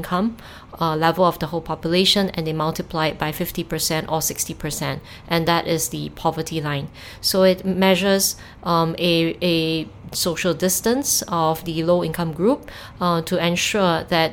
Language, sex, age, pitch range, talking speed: English, female, 20-39, 160-180 Hz, 150 wpm